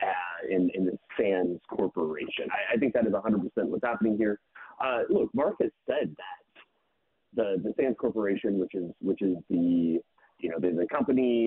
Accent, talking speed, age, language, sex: American, 185 wpm, 30-49, English, male